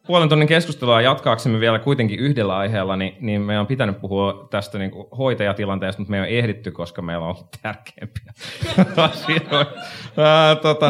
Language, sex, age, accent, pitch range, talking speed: Finnish, male, 30-49, native, 95-120 Hz, 155 wpm